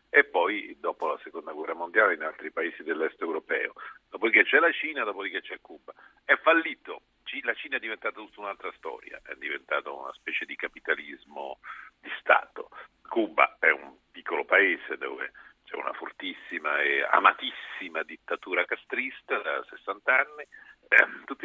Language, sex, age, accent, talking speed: Italian, male, 50-69, native, 150 wpm